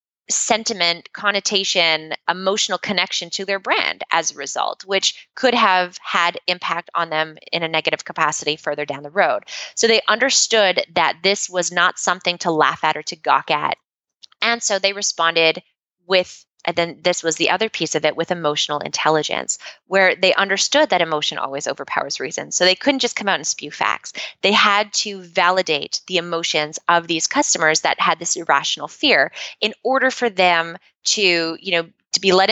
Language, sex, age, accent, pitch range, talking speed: English, female, 20-39, American, 160-200 Hz, 180 wpm